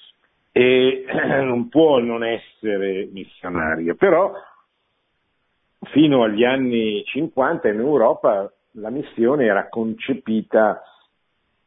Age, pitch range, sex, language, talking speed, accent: 50-69, 90-115 Hz, male, Italian, 85 wpm, native